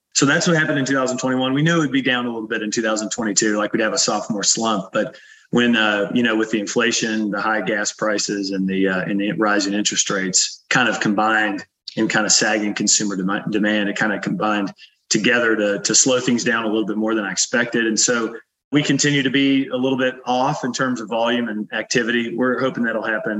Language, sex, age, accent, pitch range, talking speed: English, male, 30-49, American, 105-125 Hz, 230 wpm